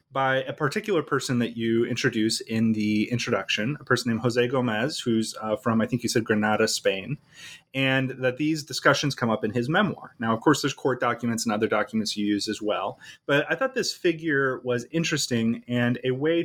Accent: American